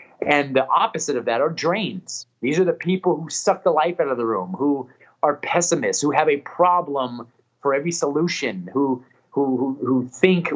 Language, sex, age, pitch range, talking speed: English, male, 30-49, 125-180 Hz, 190 wpm